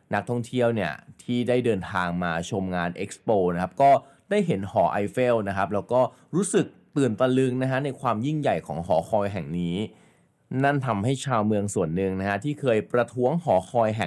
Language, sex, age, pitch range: Thai, male, 20-39, 100-135 Hz